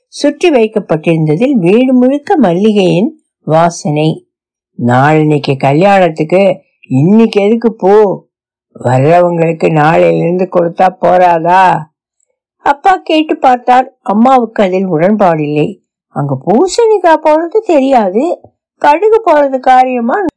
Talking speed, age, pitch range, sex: 90 wpm, 60-79, 180-275 Hz, female